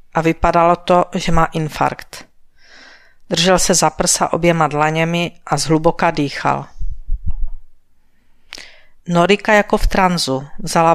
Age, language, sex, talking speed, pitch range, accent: 50-69, Czech, female, 110 wpm, 160-185 Hz, native